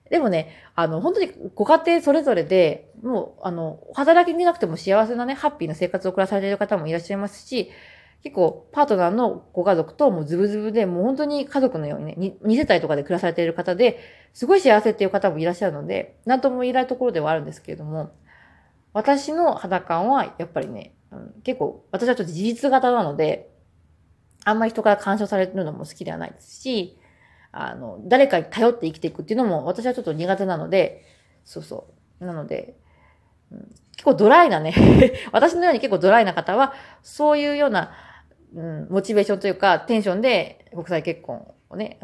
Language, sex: Japanese, female